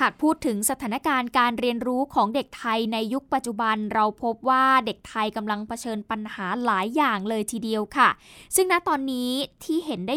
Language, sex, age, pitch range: Thai, female, 10-29, 215-265 Hz